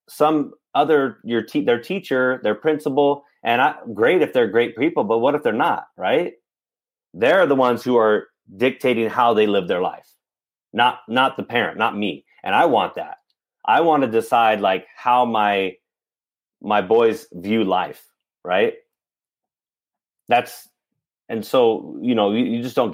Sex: male